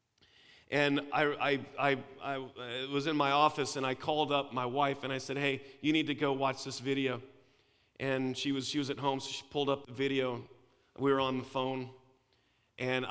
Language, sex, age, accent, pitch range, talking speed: English, male, 40-59, American, 125-145 Hz, 205 wpm